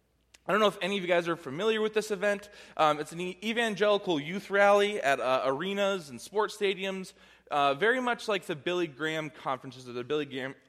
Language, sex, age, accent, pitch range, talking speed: English, male, 20-39, American, 150-200 Hz, 210 wpm